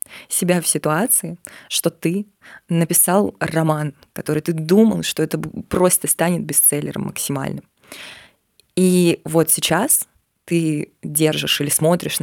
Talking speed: 115 wpm